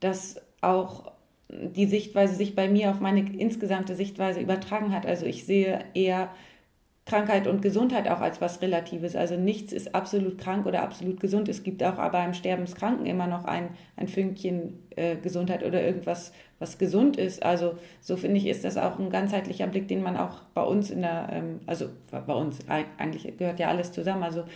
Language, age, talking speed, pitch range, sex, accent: German, 30-49, 190 wpm, 175-195 Hz, female, German